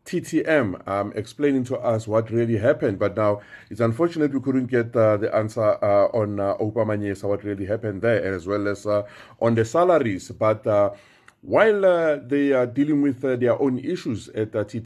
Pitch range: 105-130 Hz